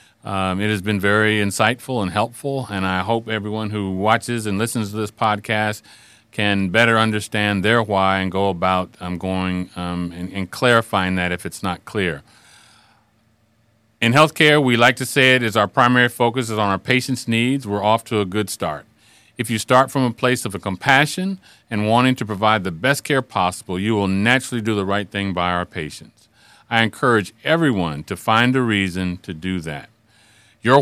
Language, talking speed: English, 190 wpm